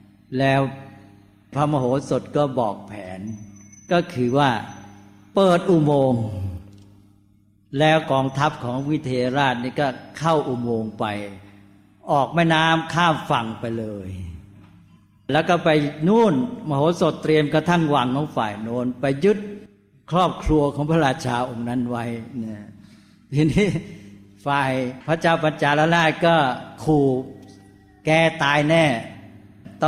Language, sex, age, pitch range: Thai, male, 60-79, 105-155 Hz